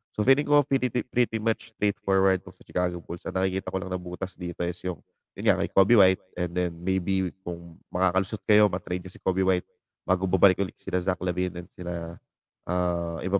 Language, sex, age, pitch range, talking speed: English, male, 20-39, 90-110 Hz, 205 wpm